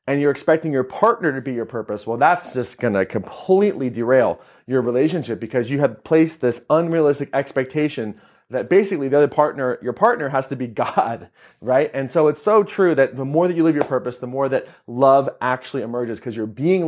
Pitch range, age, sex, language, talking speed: 130-170 Hz, 30-49, male, English, 205 wpm